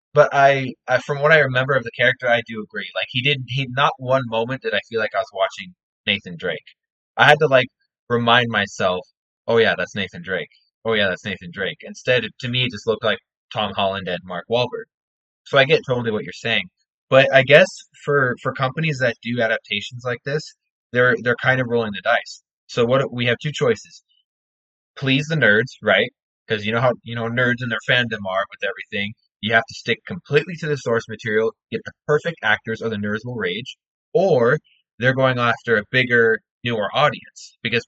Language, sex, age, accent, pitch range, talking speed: English, male, 20-39, American, 110-135 Hz, 210 wpm